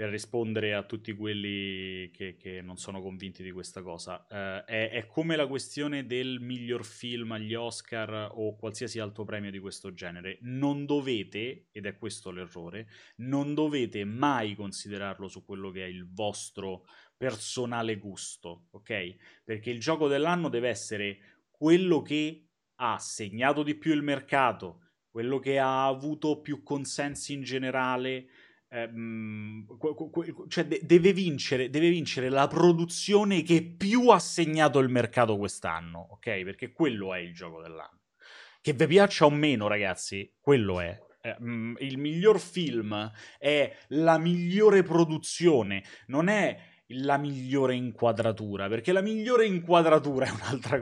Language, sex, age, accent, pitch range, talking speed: Italian, male, 20-39, native, 105-150 Hz, 140 wpm